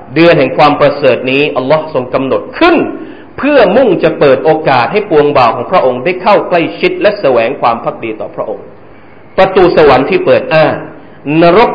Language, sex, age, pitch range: Thai, male, 30-49, 130-175 Hz